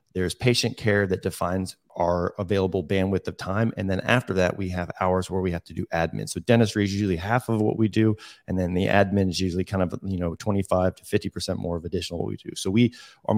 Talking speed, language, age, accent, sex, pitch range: 240 wpm, English, 30-49, American, male, 95-110 Hz